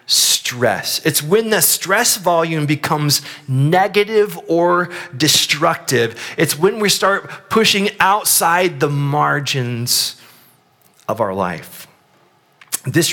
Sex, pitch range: male, 135-190 Hz